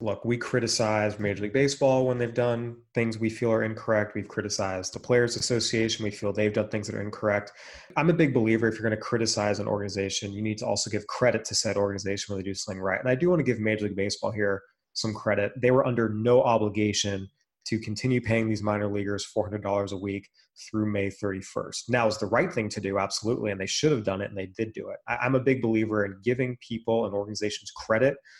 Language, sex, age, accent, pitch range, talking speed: English, male, 20-39, American, 100-115 Hz, 230 wpm